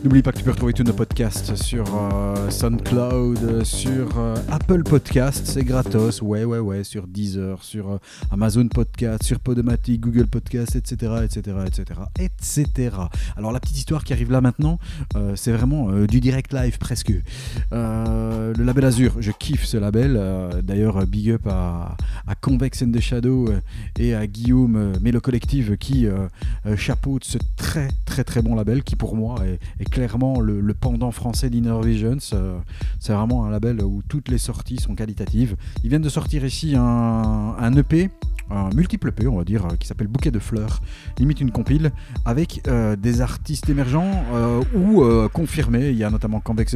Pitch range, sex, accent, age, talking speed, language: 100-125 Hz, male, French, 30-49, 185 wpm, French